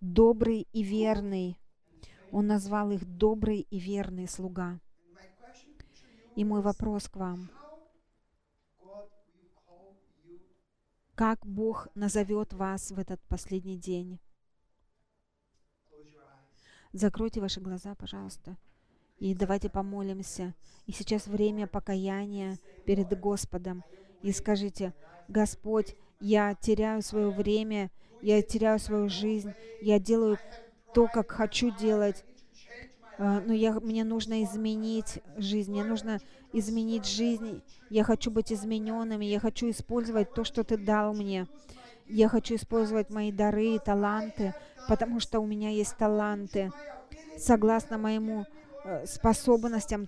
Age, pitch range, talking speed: 30-49, 195-225 Hz, 110 wpm